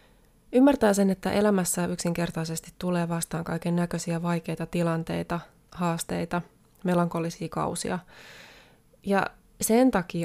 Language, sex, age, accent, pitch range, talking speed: Finnish, female, 20-39, native, 170-185 Hz, 100 wpm